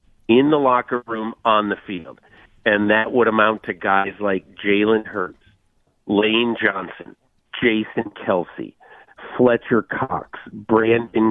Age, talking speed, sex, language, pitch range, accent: 50-69, 120 wpm, male, English, 100-120 Hz, American